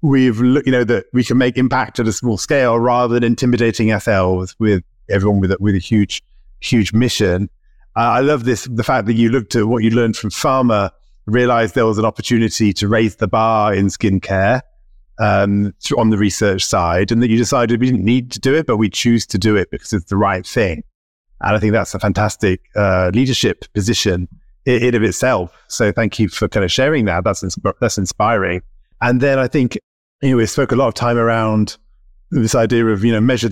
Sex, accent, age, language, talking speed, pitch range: male, British, 30-49, English, 215 wpm, 100-120 Hz